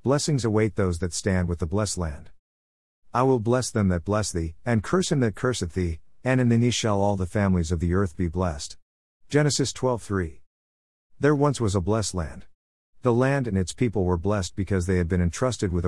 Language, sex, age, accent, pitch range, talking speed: English, male, 50-69, American, 85-120 Hz, 215 wpm